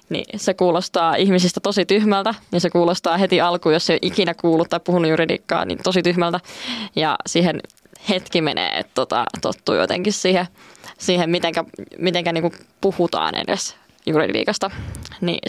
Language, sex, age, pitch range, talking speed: Finnish, female, 20-39, 170-195 Hz, 155 wpm